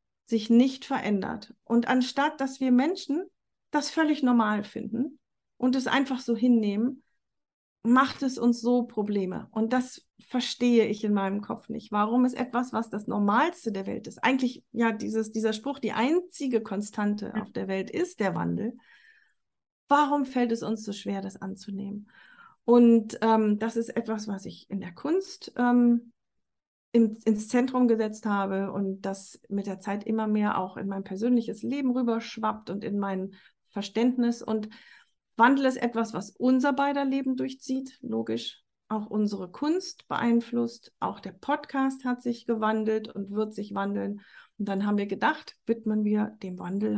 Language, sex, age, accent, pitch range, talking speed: German, female, 40-59, German, 205-255 Hz, 160 wpm